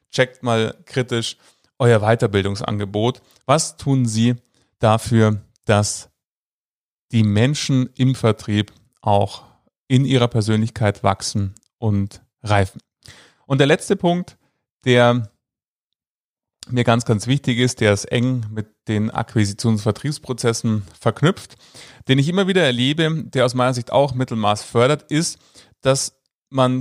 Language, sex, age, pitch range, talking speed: German, male, 30-49, 110-145 Hz, 120 wpm